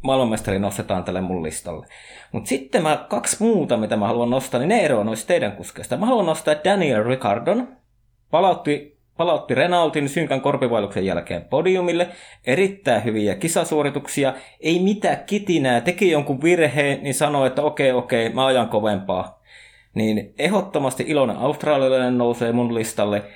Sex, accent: male, native